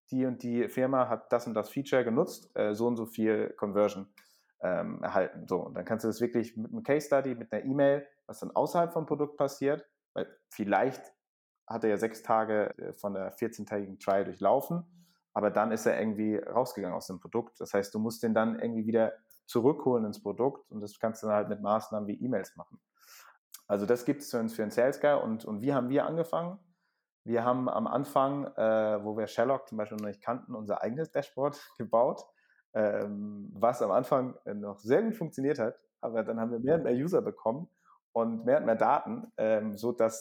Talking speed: 205 wpm